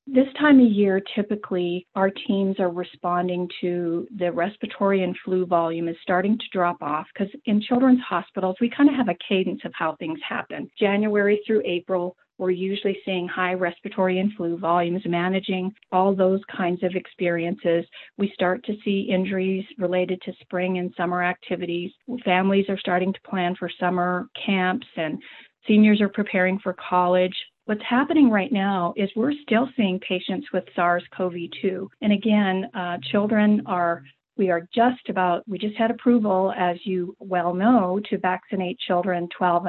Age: 40-59